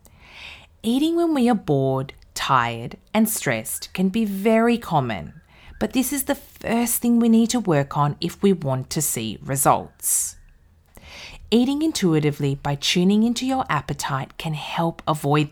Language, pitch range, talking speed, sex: English, 130-210 Hz, 150 wpm, female